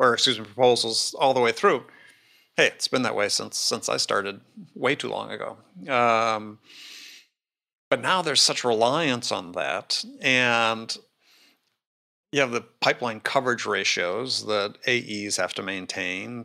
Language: English